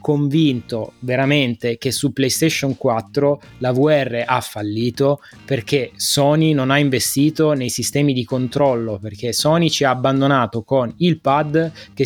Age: 20-39